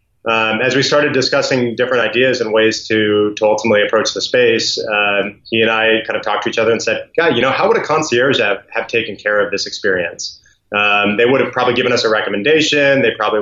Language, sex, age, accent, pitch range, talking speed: English, male, 30-49, American, 105-120 Hz, 235 wpm